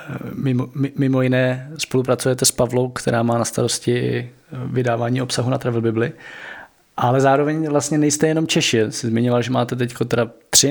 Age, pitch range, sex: 20-39, 125-145 Hz, male